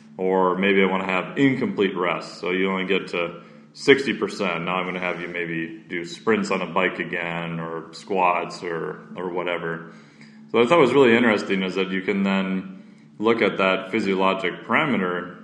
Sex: male